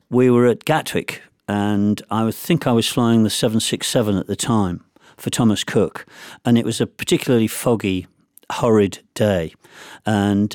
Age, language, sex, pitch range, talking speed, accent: 50-69, English, male, 95-115 Hz, 155 wpm, British